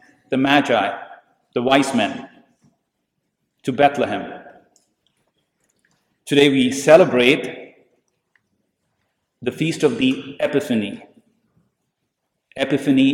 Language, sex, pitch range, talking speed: English, male, 125-165 Hz, 75 wpm